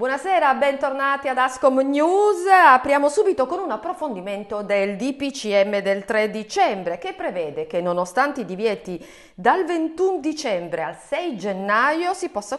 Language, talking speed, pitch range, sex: Italian, 140 wpm, 200-310 Hz, female